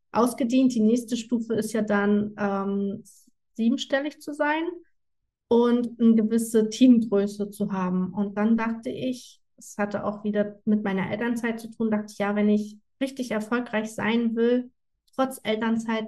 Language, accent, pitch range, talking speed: German, German, 205-230 Hz, 155 wpm